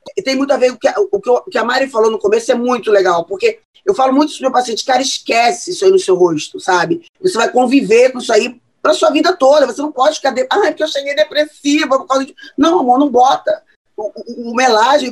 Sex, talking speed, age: female, 250 wpm, 20-39